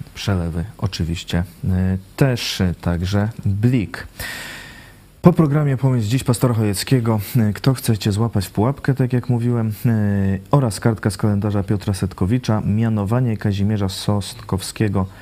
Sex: male